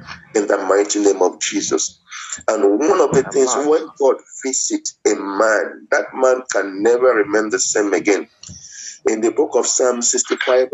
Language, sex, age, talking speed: English, male, 50-69, 170 wpm